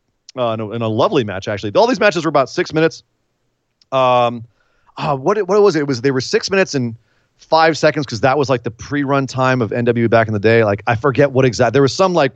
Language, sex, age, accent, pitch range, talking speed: English, male, 40-59, American, 115-155 Hz, 250 wpm